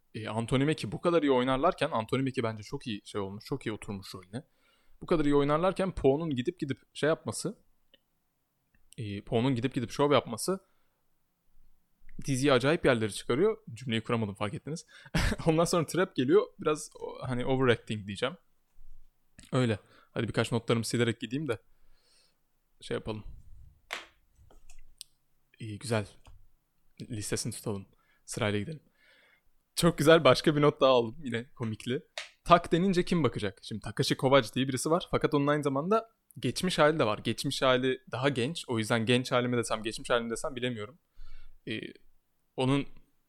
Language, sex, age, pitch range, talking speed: Turkish, male, 20-39, 115-155 Hz, 145 wpm